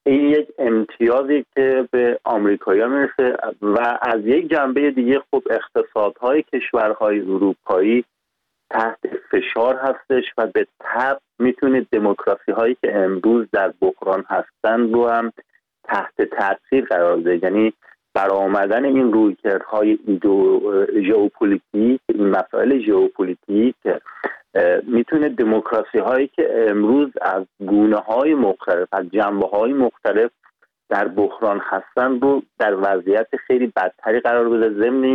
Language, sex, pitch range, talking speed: Persian, male, 110-145 Hz, 110 wpm